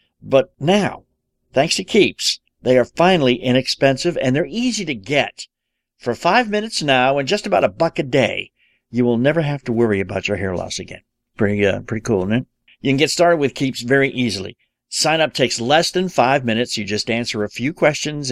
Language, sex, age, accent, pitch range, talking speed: English, male, 50-69, American, 110-150 Hz, 205 wpm